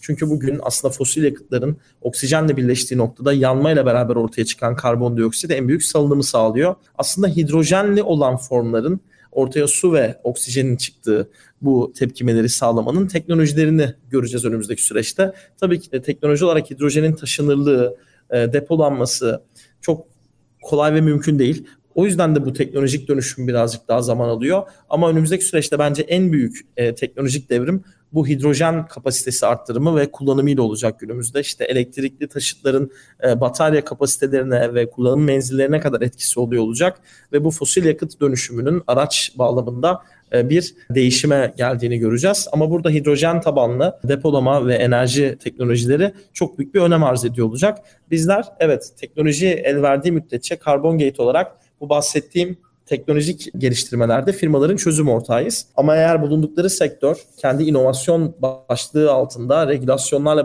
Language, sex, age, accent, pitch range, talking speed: Turkish, male, 40-59, native, 125-160 Hz, 135 wpm